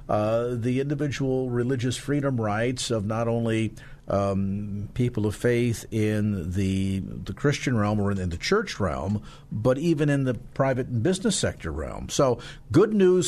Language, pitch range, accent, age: English, 105-135 Hz, American, 50-69